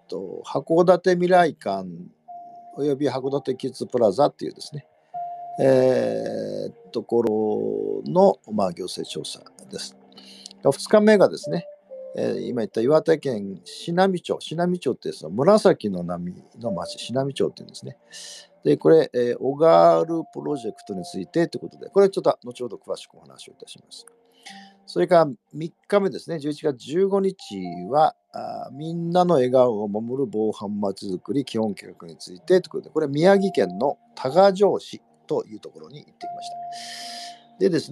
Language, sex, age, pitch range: Japanese, male, 50-69, 125-200 Hz